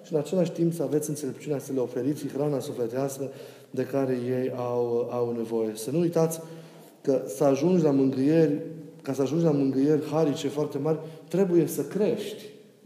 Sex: male